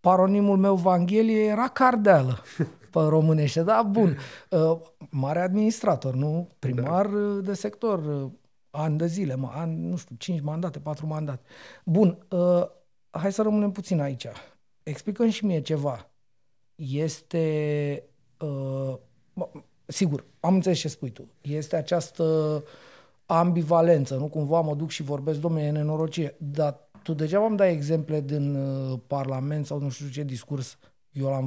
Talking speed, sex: 135 wpm, male